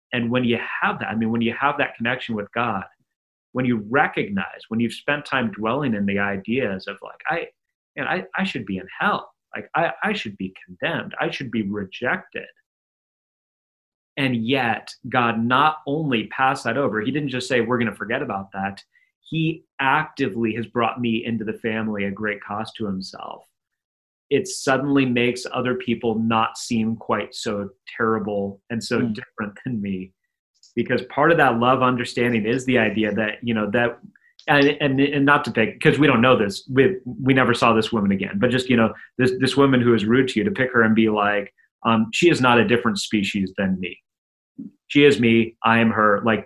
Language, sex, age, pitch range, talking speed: English, male, 30-49, 110-135 Hz, 200 wpm